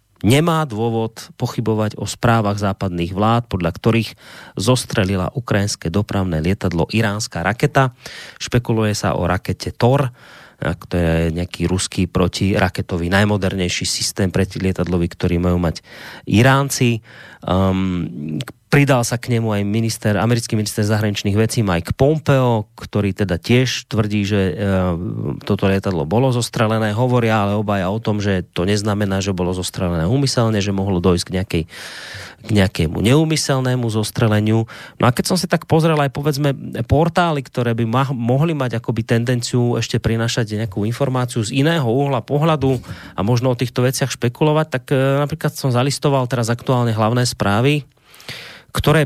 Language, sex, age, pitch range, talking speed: Slovak, male, 30-49, 100-125 Hz, 145 wpm